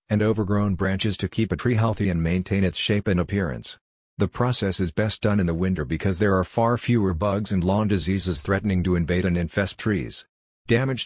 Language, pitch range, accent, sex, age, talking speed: English, 90-105 Hz, American, male, 50-69, 205 wpm